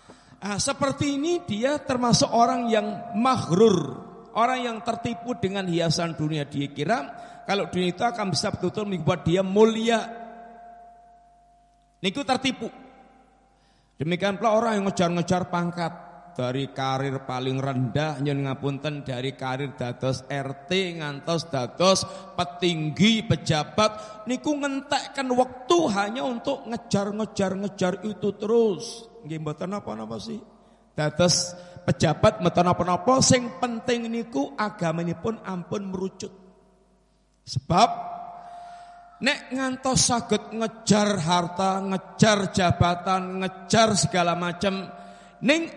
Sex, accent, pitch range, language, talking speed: male, native, 160-230 Hz, Indonesian, 105 wpm